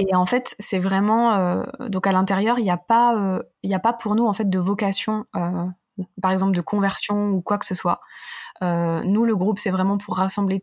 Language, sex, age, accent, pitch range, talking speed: French, female, 20-39, French, 180-225 Hz, 205 wpm